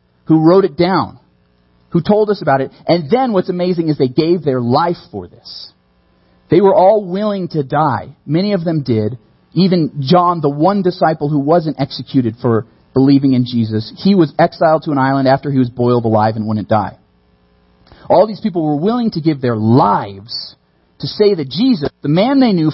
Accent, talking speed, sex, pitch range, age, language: American, 195 wpm, male, 120-200 Hz, 40-59, English